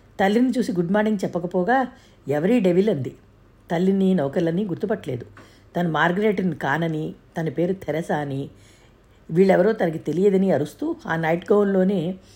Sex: female